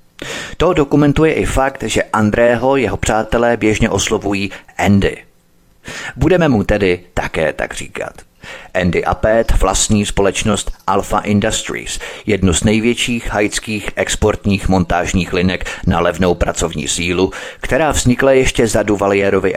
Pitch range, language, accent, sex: 95-115 Hz, Czech, native, male